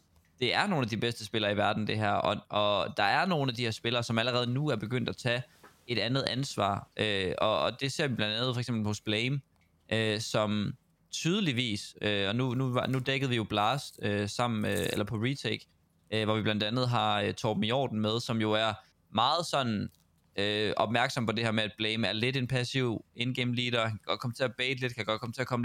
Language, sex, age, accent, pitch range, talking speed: Danish, male, 20-39, native, 105-130 Hz, 240 wpm